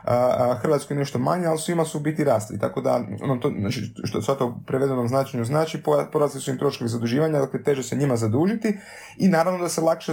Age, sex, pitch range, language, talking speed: 30-49, male, 120-160 Hz, Croatian, 200 wpm